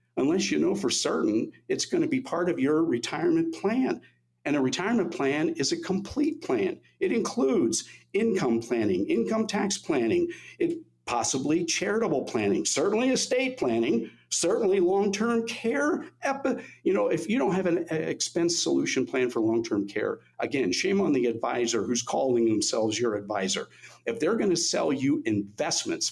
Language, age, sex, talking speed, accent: English, 50-69, male, 160 wpm, American